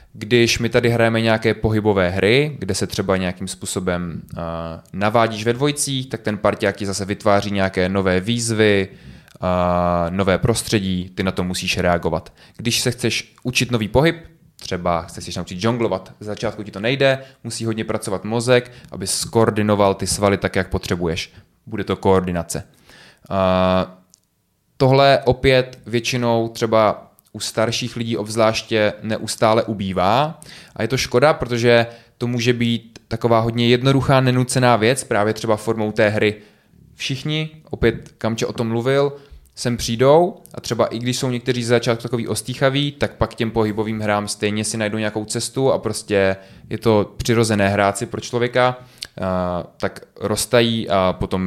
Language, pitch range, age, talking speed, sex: Czech, 100-120 Hz, 20-39, 155 wpm, male